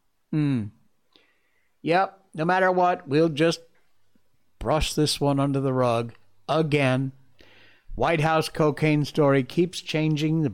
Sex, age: male, 60-79